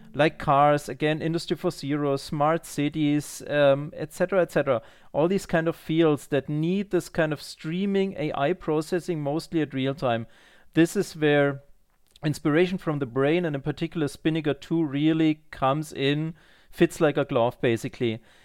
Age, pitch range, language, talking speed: 40-59, 145-180 Hz, English, 165 wpm